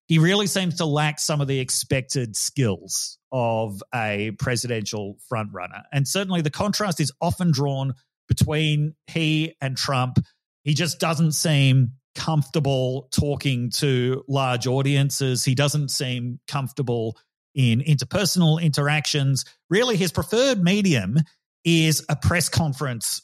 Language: English